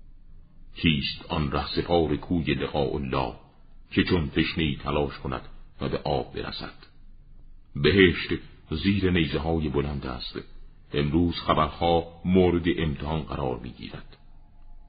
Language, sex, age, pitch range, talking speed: Persian, male, 50-69, 70-90 Hz, 110 wpm